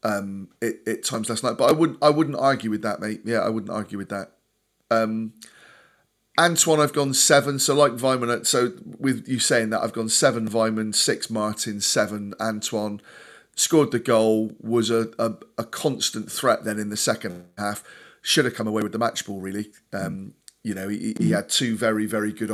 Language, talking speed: English, 200 wpm